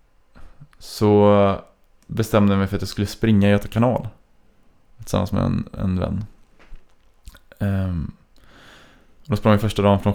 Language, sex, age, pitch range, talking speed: Swedish, male, 20-39, 100-110 Hz, 150 wpm